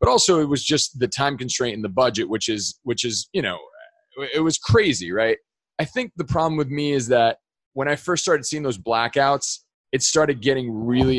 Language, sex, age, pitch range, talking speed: English, male, 30-49, 115-150 Hz, 215 wpm